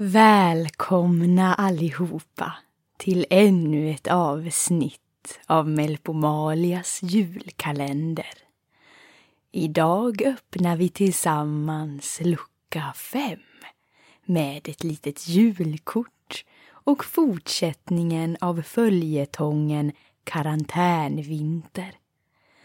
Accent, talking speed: native, 65 wpm